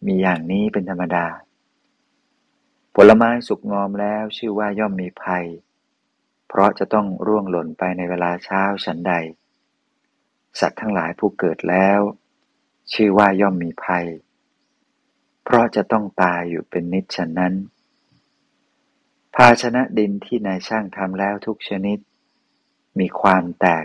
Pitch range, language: 90-120 Hz, Thai